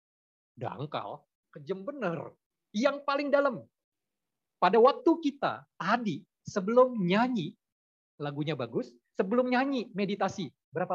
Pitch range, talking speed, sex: 160-235 Hz, 100 wpm, male